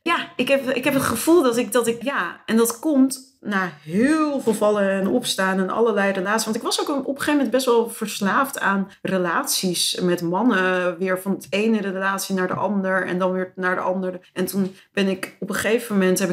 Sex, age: female, 40-59